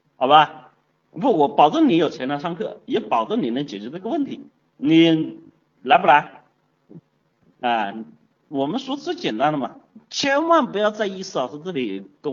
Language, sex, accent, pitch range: Chinese, male, native, 145-225 Hz